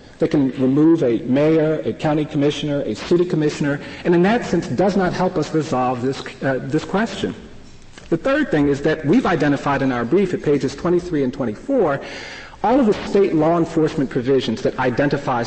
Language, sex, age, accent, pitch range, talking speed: English, male, 40-59, American, 135-180 Hz, 185 wpm